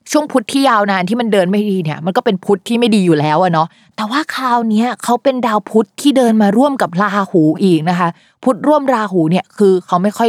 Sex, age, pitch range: female, 20-39, 175-230 Hz